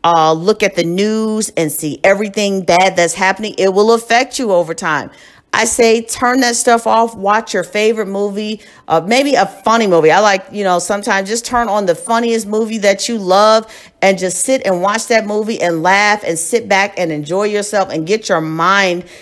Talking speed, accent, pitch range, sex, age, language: 205 wpm, American, 190-235 Hz, female, 40-59, English